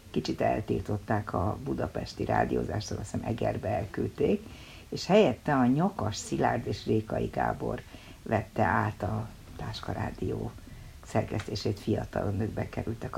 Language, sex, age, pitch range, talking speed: Hungarian, female, 60-79, 105-125 Hz, 120 wpm